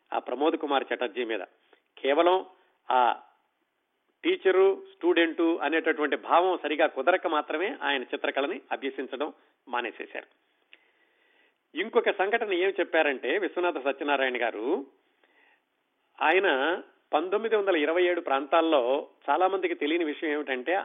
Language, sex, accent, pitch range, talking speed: Telugu, male, native, 150-210 Hz, 95 wpm